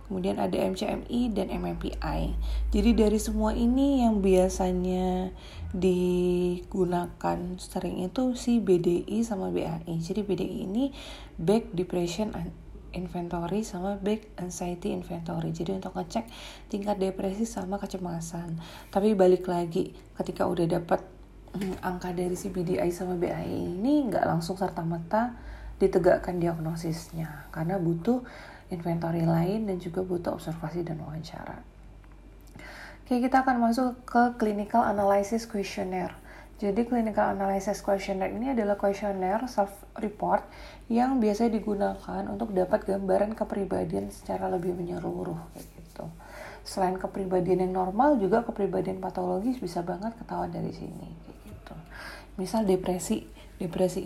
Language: Indonesian